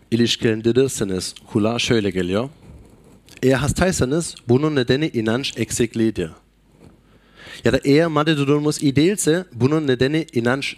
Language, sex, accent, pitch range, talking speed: Turkish, male, German, 110-140 Hz, 110 wpm